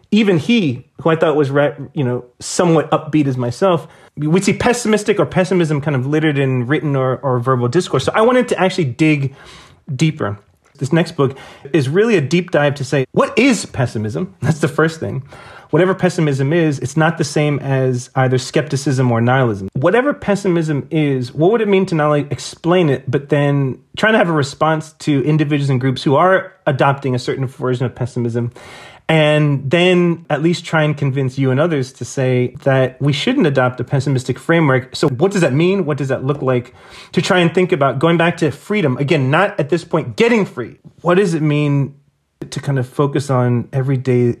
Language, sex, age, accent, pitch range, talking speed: English, male, 30-49, American, 125-165 Hz, 200 wpm